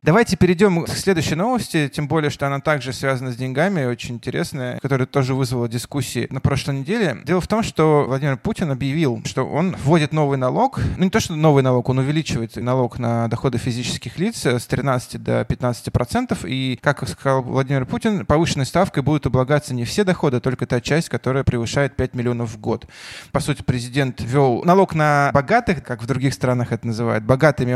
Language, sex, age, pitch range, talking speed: Russian, male, 20-39, 120-150 Hz, 190 wpm